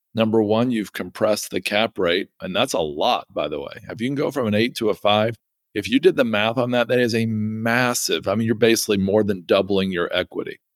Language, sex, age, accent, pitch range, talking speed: English, male, 50-69, American, 100-120 Hz, 245 wpm